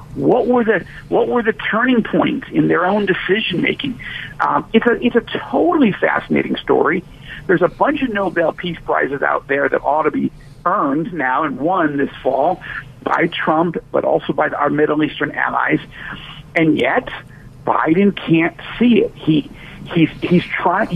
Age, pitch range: 50-69, 155-245 Hz